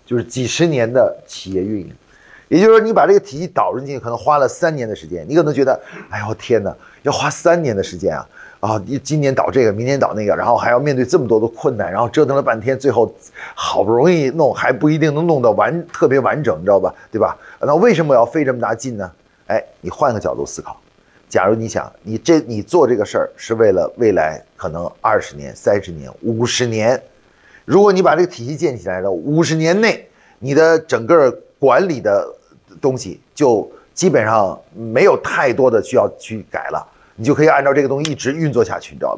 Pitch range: 115-155 Hz